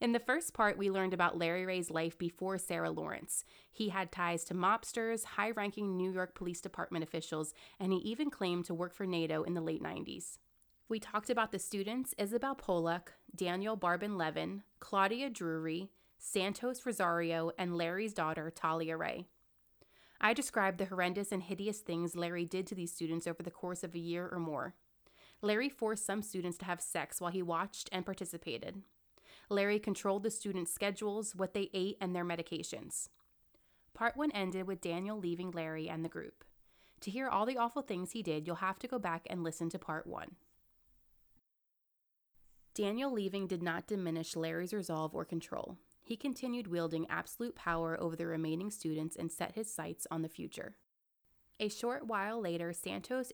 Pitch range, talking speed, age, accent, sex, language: 170-210 Hz, 175 wpm, 30-49, American, female, English